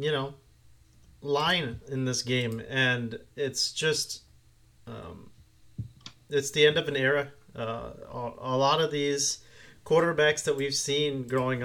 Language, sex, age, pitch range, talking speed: English, male, 30-49, 115-140 Hz, 140 wpm